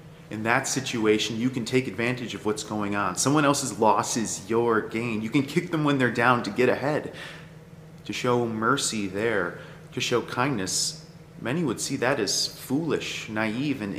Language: English